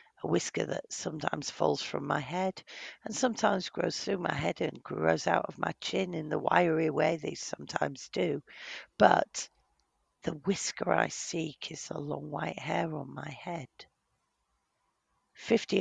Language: English